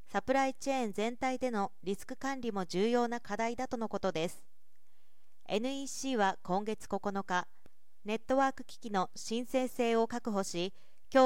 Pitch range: 195-250 Hz